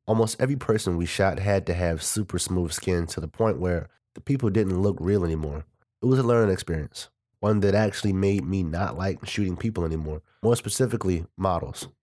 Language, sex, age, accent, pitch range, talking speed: English, male, 30-49, American, 90-110 Hz, 195 wpm